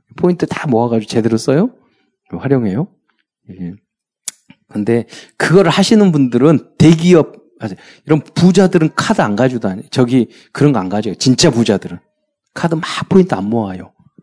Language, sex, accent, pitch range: Korean, male, native, 110-160 Hz